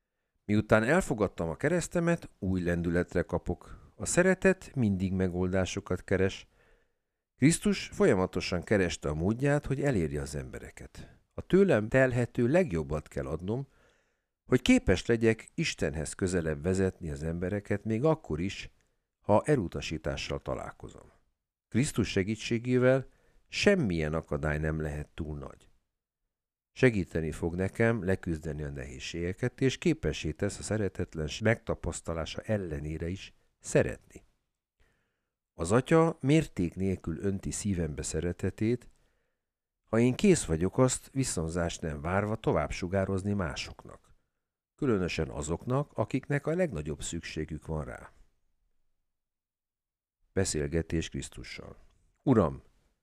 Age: 50-69